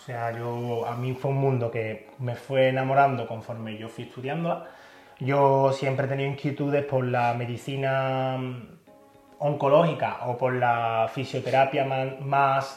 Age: 20-39